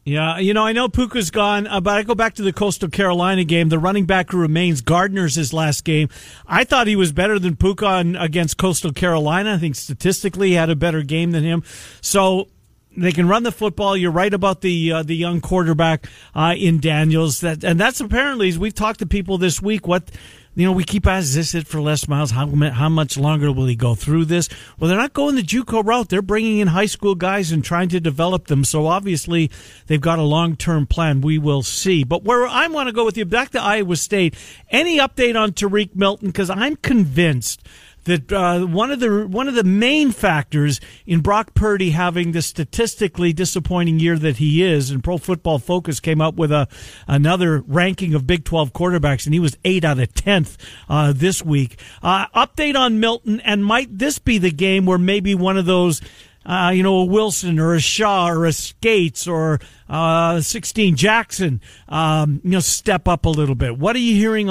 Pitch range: 155-200 Hz